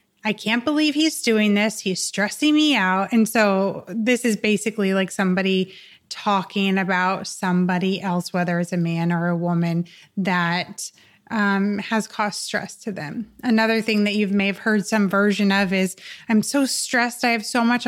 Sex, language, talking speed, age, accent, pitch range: female, English, 180 wpm, 20-39, American, 195-235 Hz